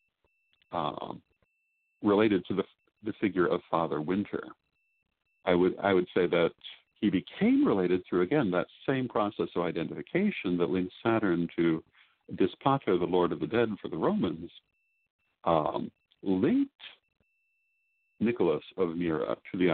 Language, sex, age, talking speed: English, male, 50-69, 135 wpm